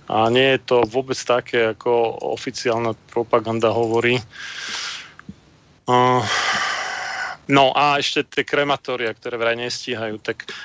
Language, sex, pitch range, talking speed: Slovak, male, 120-130 Hz, 105 wpm